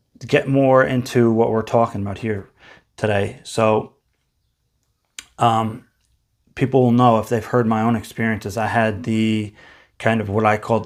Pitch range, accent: 110-125 Hz, American